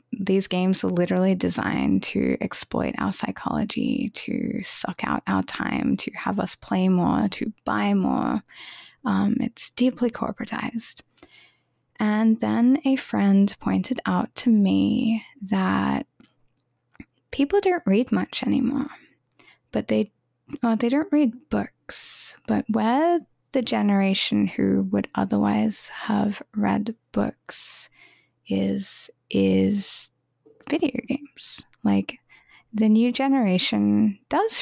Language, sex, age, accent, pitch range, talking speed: English, female, 10-29, American, 175-245 Hz, 115 wpm